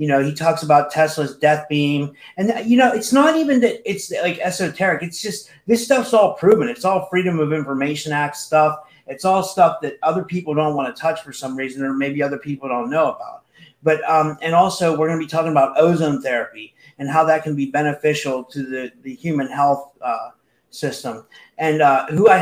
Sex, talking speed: male, 215 wpm